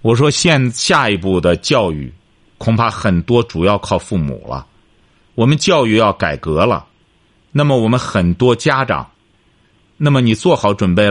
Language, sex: Chinese, male